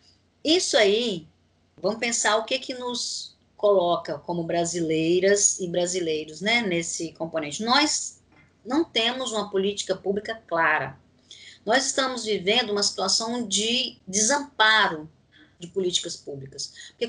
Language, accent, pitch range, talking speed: Portuguese, Brazilian, 175-235 Hz, 120 wpm